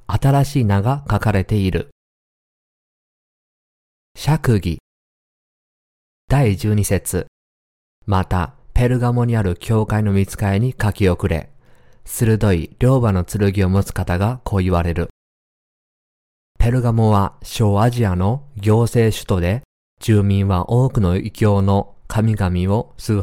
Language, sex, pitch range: Japanese, male, 90-115 Hz